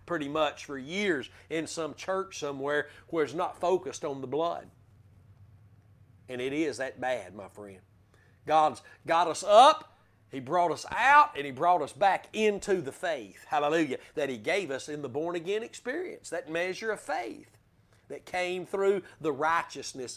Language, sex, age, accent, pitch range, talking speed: English, male, 40-59, American, 135-220 Hz, 165 wpm